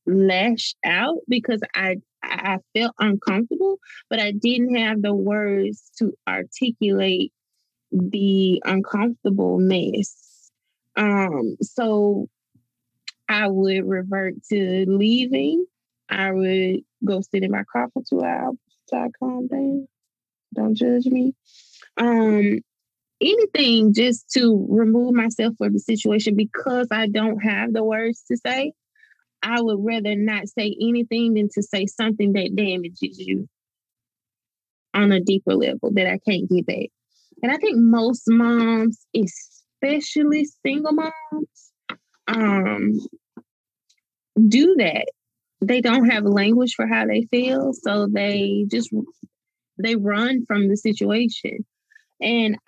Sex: female